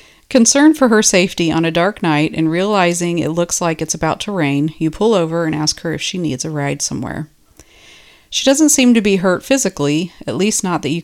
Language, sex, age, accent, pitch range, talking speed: English, female, 40-59, American, 155-200 Hz, 225 wpm